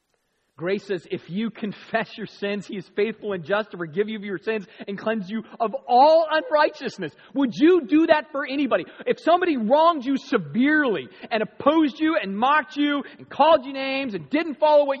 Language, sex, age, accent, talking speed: English, male, 40-59, American, 195 wpm